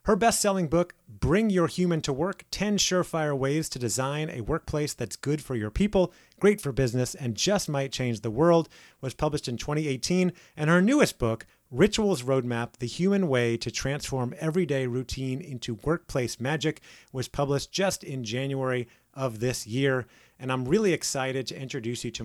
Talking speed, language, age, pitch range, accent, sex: 175 wpm, English, 30-49, 120-155 Hz, American, male